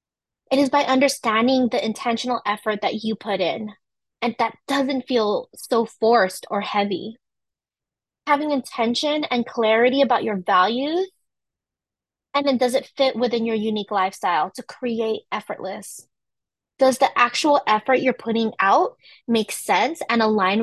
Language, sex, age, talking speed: English, female, 20-39, 145 wpm